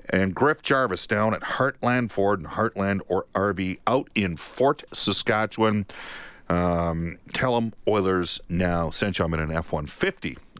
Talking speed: 155 wpm